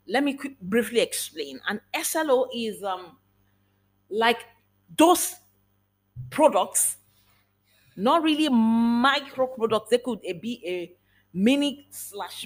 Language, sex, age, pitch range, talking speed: English, female, 40-59, 185-275 Hz, 100 wpm